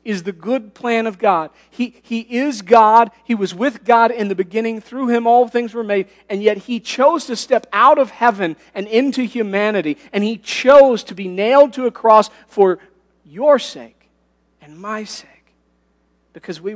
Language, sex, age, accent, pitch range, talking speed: English, male, 40-59, American, 180-260 Hz, 185 wpm